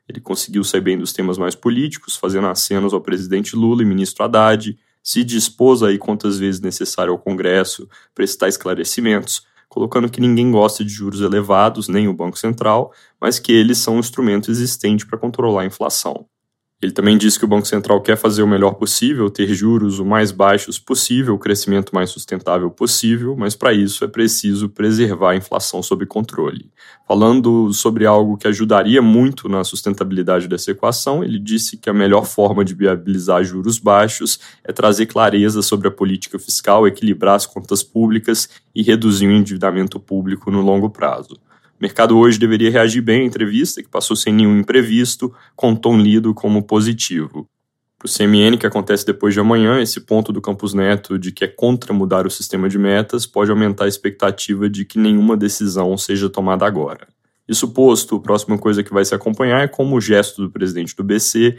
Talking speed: 185 wpm